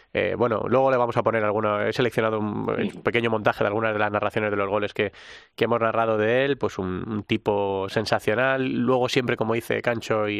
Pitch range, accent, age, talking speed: 105-130 Hz, Spanish, 20-39, 220 wpm